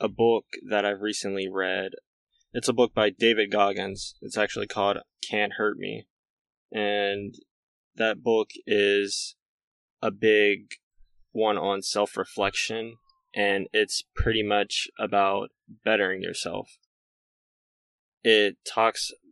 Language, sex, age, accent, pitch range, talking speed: English, male, 10-29, American, 100-110 Hz, 110 wpm